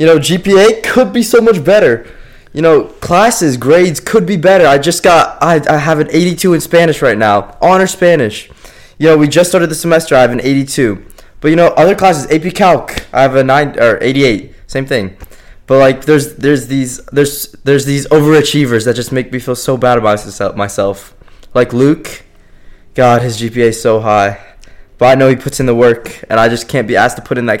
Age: 20-39